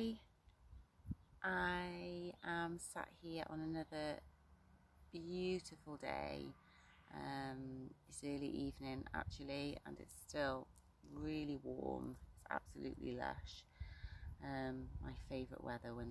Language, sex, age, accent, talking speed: English, female, 30-49, British, 95 wpm